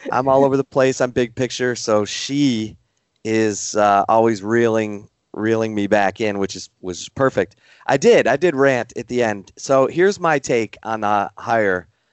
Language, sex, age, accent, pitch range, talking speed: English, male, 30-49, American, 100-125 Hz, 185 wpm